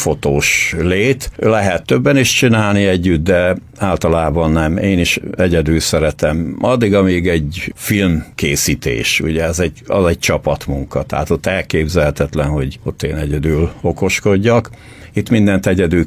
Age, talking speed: 60-79, 130 wpm